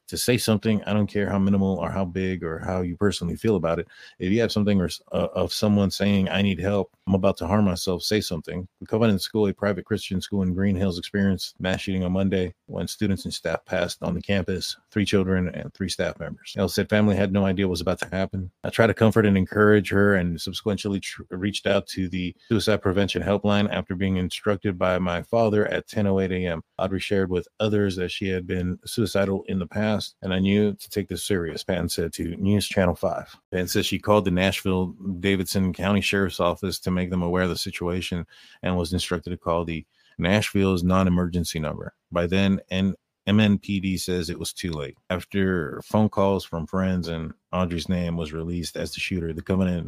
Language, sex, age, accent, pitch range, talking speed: English, male, 30-49, American, 90-100 Hz, 215 wpm